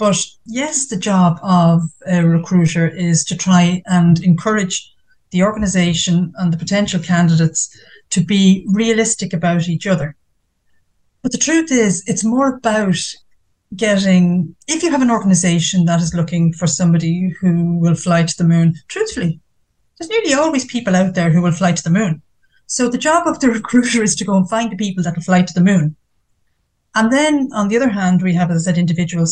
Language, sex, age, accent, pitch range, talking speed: English, female, 30-49, Irish, 170-220 Hz, 190 wpm